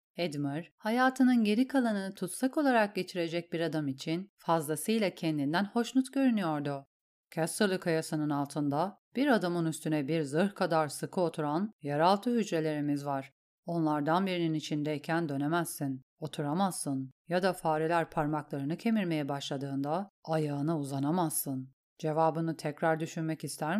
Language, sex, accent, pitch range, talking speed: Turkish, female, native, 150-185 Hz, 115 wpm